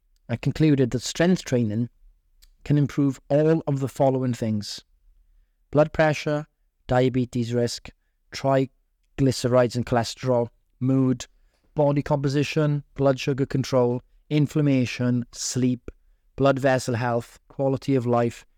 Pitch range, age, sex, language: 105-140 Hz, 30-49, male, English